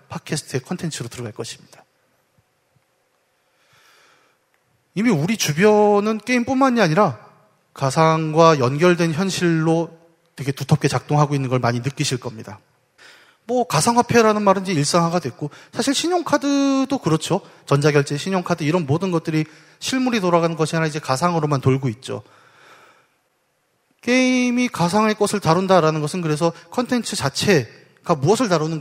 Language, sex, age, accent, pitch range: Korean, male, 30-49, native, 145-225 Hz